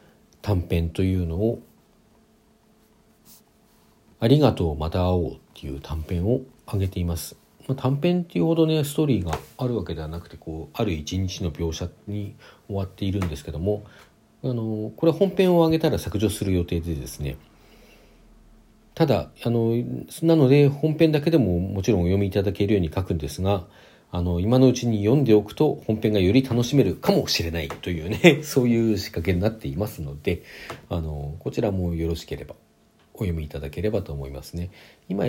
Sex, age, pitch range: male, 40-59, 85-125 Hz